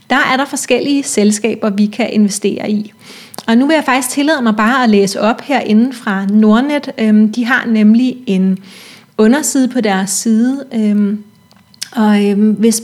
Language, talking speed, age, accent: Danish, 160 wpm, 30-49, native